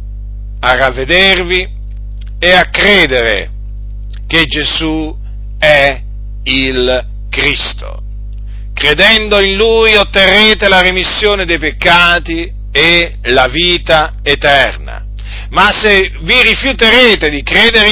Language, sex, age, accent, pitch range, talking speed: Italian, male, 50-69, native, 100-170 Hz, 95 wpm